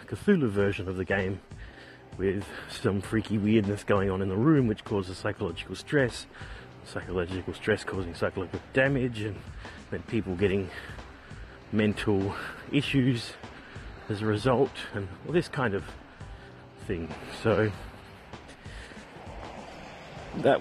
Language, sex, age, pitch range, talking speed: English, male, 30-49, 100-135 Hz, 115 wpm